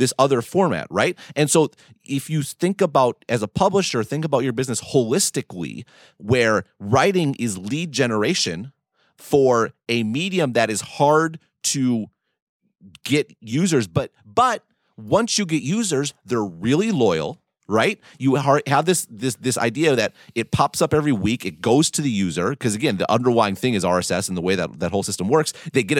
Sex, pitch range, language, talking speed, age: male, 120-160 Hz, English, 175 wpm, 30-49